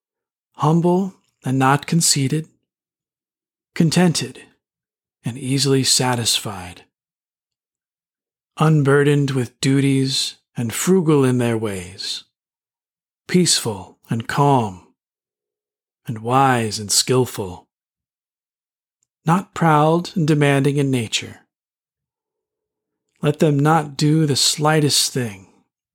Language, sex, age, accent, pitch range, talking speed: English, male, 40-59, American, 120-150 Hz, 85 wpm